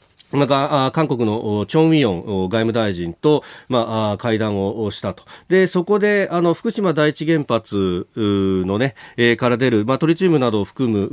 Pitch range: 110-170 Hz